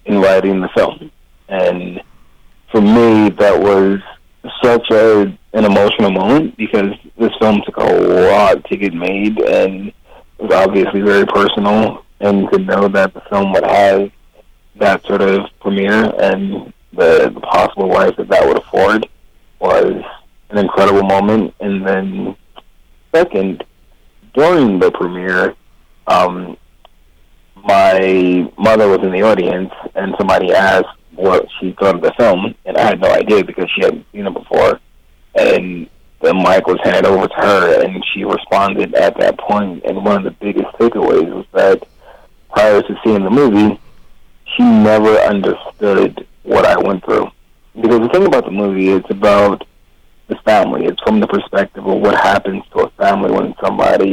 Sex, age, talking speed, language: male, 30-49, 160 wpm, English